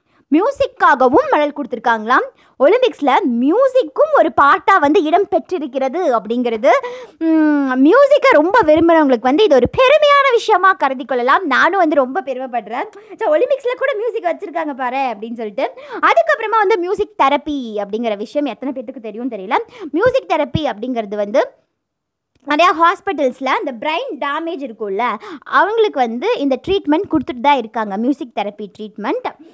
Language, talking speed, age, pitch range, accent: Tamil, 125 wpm, 20-39, 260-385 Hz, native